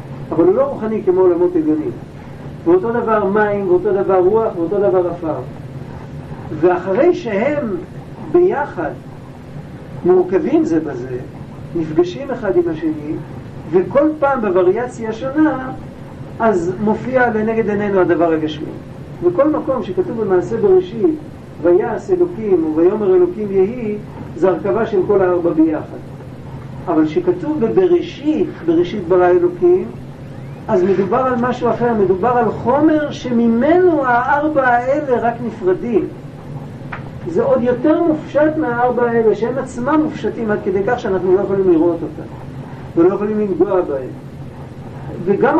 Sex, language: male, Hebrew